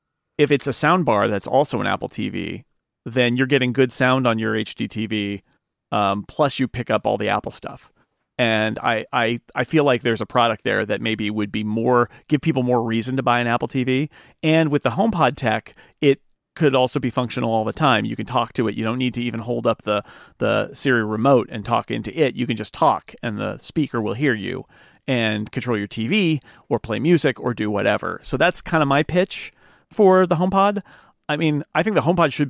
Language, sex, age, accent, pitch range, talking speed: English, male, 40-59, American, 115-155 Hz, 220 wpm